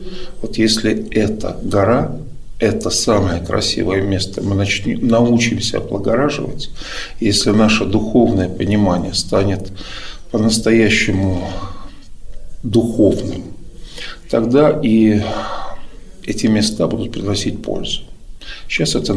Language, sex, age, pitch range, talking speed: Russian, male, 50-69, 100-115 Hz, 90 wpm